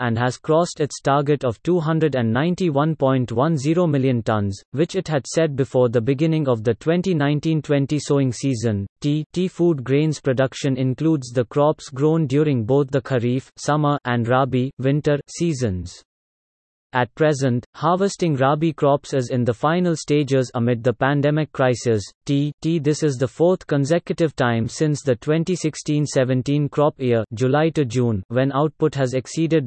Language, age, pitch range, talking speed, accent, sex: English, 30-49, 125-155 Hz, 145 wpm, Indian, male